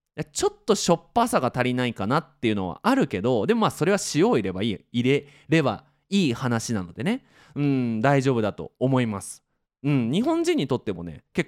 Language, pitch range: Japanese, 120-195 Hz